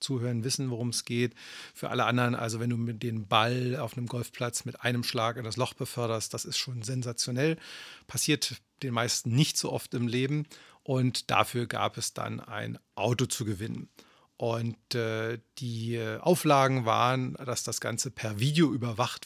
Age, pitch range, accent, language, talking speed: 40-59, 115-135 Hz, German, German, 170 wpm